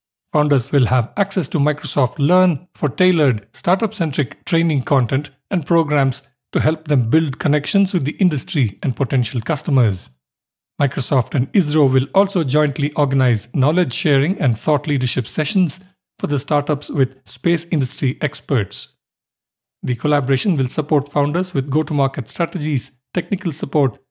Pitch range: 135-170 Hz